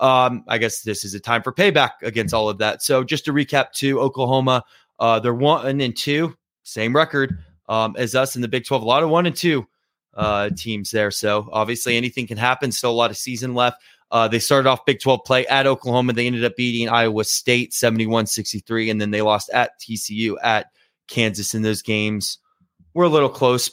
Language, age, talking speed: English, 20-39, 210 wpm